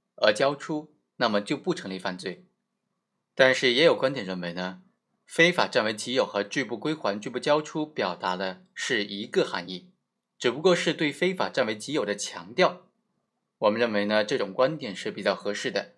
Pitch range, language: 110-175 Hz, Chinese